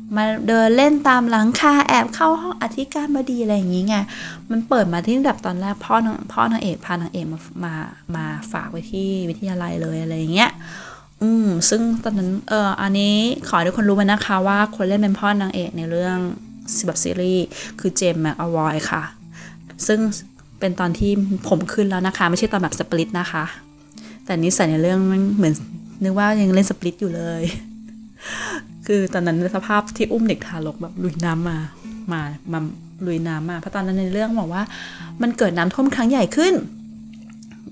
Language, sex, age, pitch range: Thai, female, 20-39, 170-220 Hz